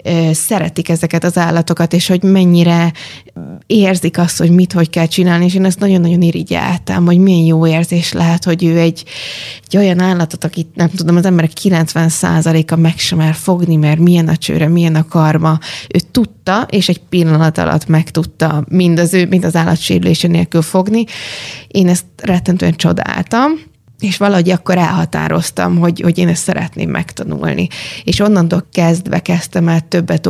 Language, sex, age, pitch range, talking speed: Hungarian, female, 20-39, 160-180 Hz, 165 wpm